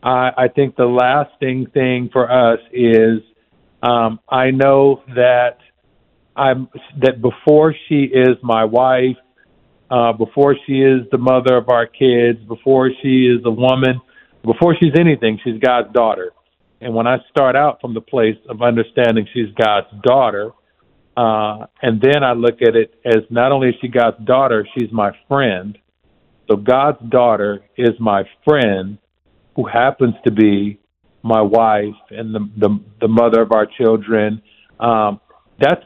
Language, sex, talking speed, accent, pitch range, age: English, male, 150 wpm, American, 110-130 Hz, 50-69